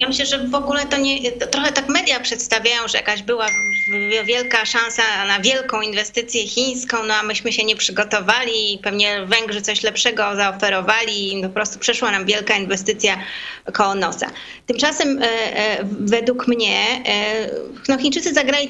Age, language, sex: 20-39, Polish, female